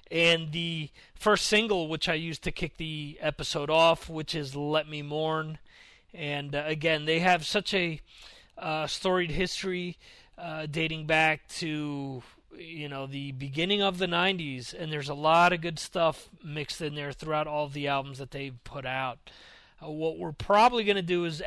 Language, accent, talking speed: English, American, 180 wpm